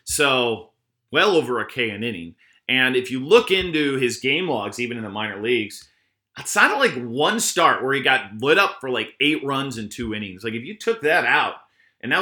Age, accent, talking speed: 30-49, American, 220 wpm